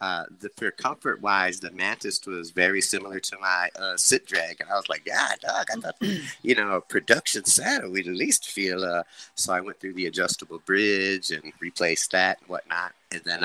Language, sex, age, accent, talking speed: English, male, 30-49, American, 215 wpm